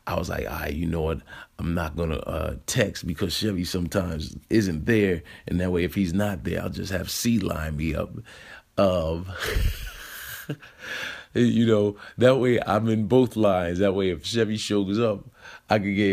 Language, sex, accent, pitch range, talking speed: English, male, American, 90-115 Hz, 185 wpm